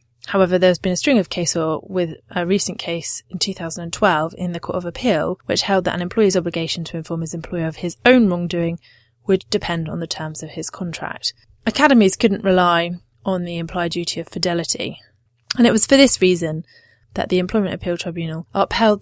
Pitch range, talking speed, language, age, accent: 160-190 Hz, 190 wpm, English, 20-39, British